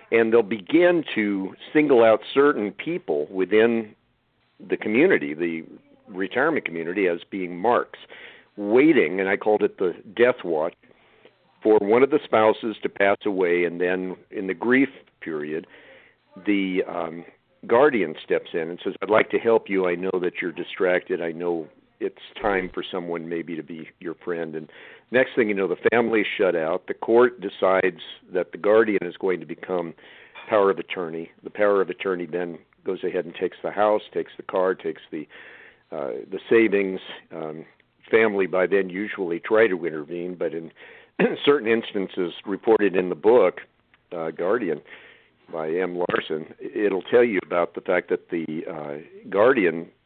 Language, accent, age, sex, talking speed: English, American, 50-69, male, 170 wpm